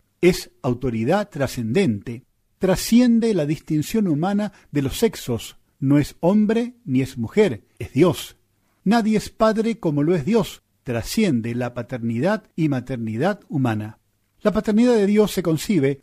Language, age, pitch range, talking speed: Spanish, 50-69, 130-205 Hz, 140 wpm